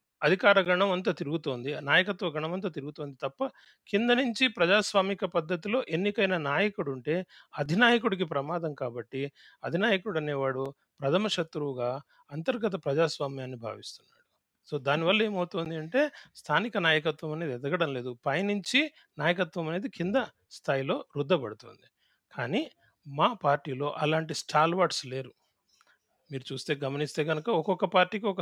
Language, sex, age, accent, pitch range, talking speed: Telugu, male, 30-49, native, 150-200 Hz, 110 wpm